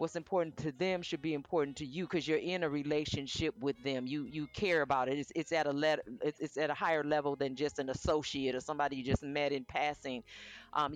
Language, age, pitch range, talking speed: English, 40-59, 145-185 Hz, 240 wpm